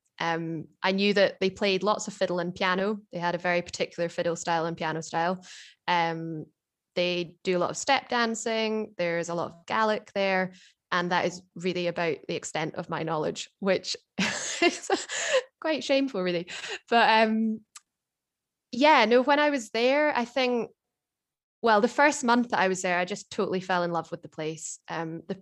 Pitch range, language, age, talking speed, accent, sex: 175-220 Hz, English, 10-29, 185 wpm, British, female